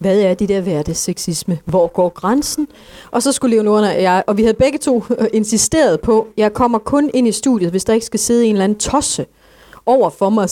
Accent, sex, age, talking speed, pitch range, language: native, female, 30-49, 235 wpm, 195-250 Hz, Danish